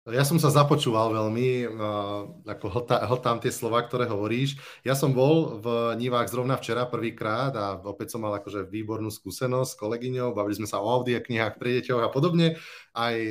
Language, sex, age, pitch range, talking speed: Slovak, male, 30-49, 125-155 Hz, 170 wpm